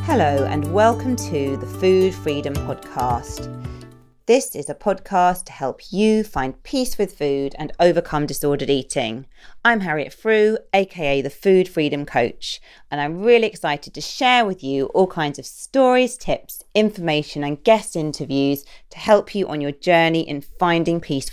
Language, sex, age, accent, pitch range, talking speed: English, female, 40-59, British, 145-210 Hz, 160 wpm